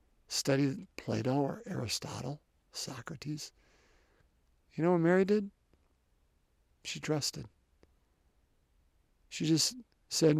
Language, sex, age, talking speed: English, male, 50-69, 85 wpm